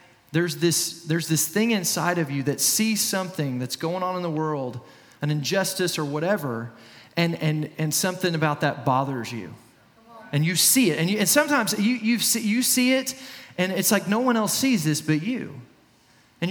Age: 30-49